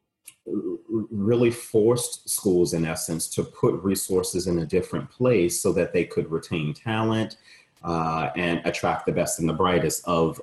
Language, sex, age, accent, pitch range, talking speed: English, male, 30-49, American, 85-105 Hz, 155 wpm